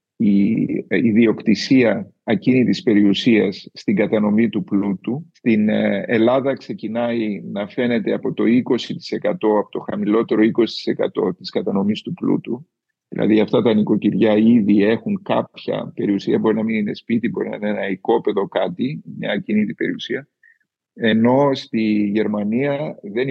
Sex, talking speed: male, 130 wpm